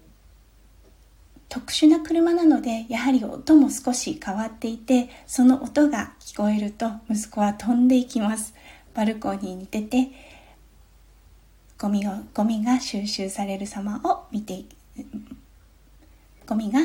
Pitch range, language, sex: 205-275 Hz, Japanese, female